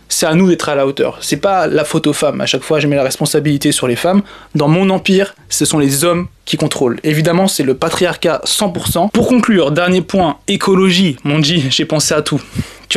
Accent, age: French, 20-39